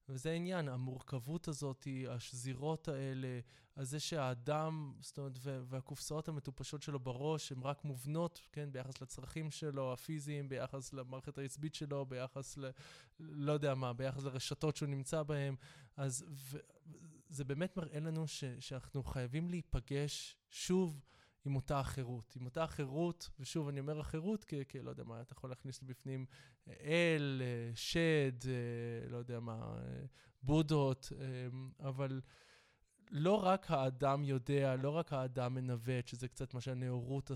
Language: Hebrew